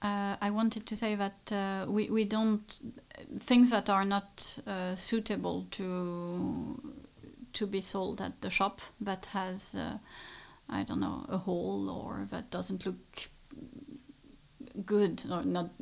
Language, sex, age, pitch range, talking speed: English, female, 30-49, 185-220 Hz, 145 wpm